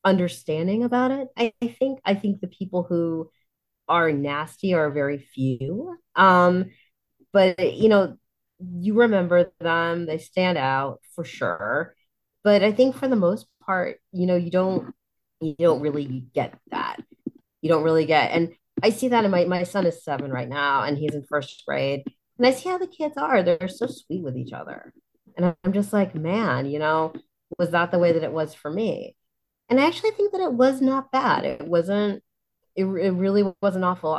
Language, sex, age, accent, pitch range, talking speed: English, female, 30-49, American, 160-210 Hz, 195 wpm